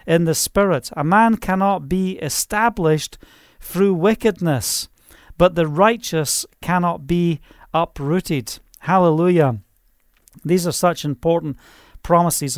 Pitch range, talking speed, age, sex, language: 155-210 Hz, 105 wpm, 40-59, male, English